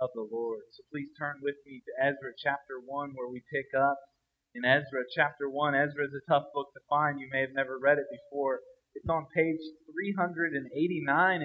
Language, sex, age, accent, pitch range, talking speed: English, male, 30-49, American, 145-185 Hz, 185 wpm